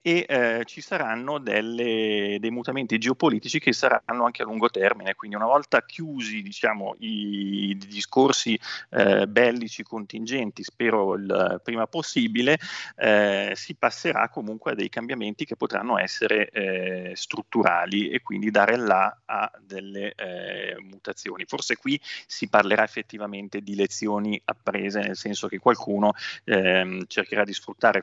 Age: 30-49